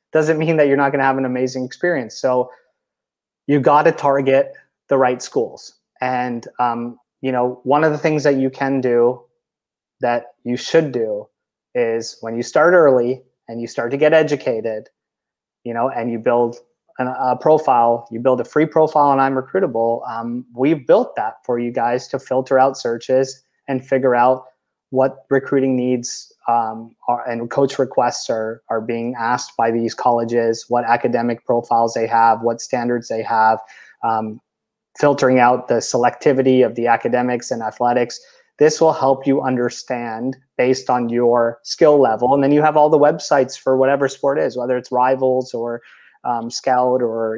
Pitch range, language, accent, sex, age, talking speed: 120-135 Hz, English, American, male, 20-39, 175 wpm